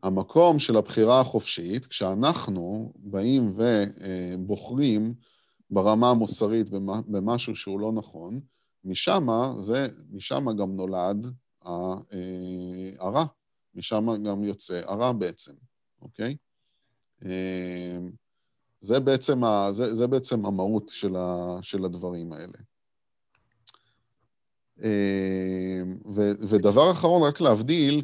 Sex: male